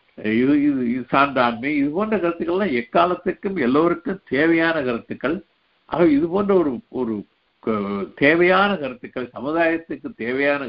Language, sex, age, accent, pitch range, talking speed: Tamil, male, 60-79, native, 120-180 Hz, 105 wpm